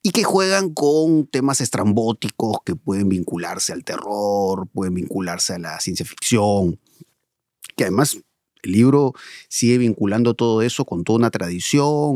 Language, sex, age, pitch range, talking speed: Spanish, male, 30-49, 115-165 Hz, 145 wpm